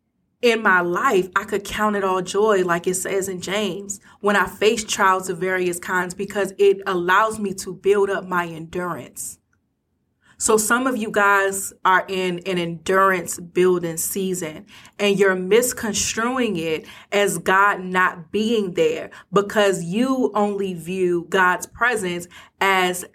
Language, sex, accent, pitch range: English, female, American, 185-220 Hz